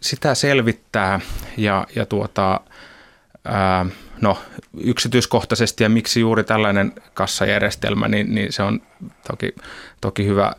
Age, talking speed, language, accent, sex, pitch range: 20-39, 115 wpm, Finnish, native, male, 100-115 Hz